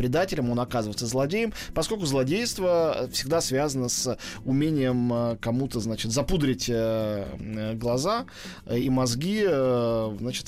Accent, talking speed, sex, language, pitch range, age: native, 95 wpm, male, Russian, 125-175 Hz, 20-39